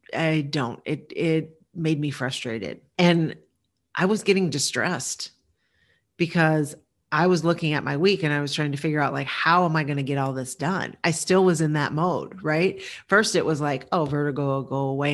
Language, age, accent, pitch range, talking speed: English, 40-59, American, 145-185 Hz, 205 wpm